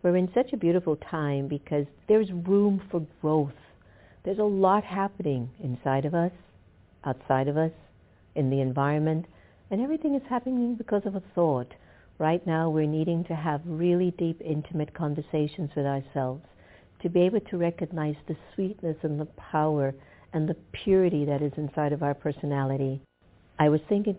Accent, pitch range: American, 130-170 Hz